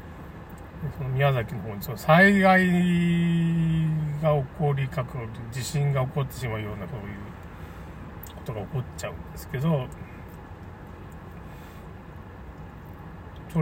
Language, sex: Japanese, male